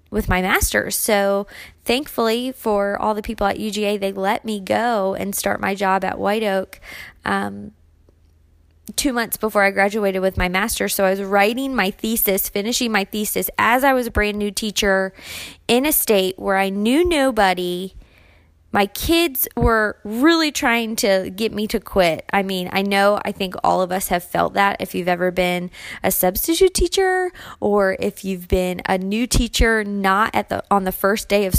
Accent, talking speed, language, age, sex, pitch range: American, 185 wpm, English, 20-39, female, 180-220 Hz